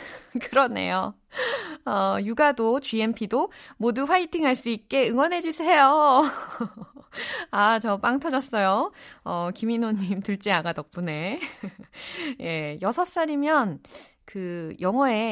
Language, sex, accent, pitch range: Korean, female, native, 170-265 Hz